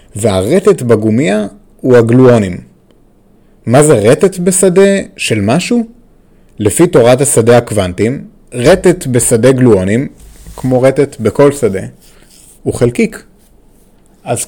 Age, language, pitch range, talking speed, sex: 30-49, Hebrew, 110-160 Hz, 100 wpm, male